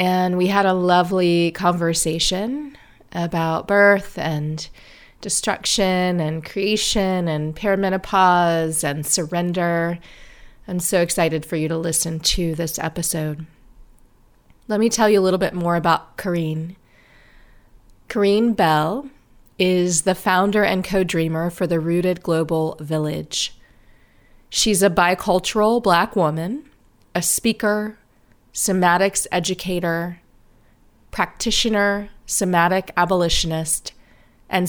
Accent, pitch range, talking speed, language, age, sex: American, 165-195 Hz, 105 wpm, English, 30-49, female